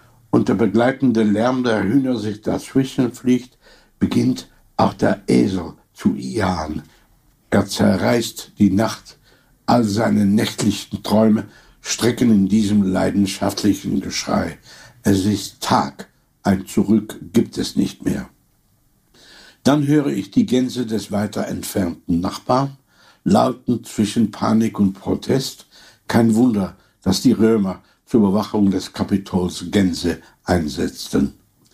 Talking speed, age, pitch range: 115 wpm, 70-89, 100-130 Hz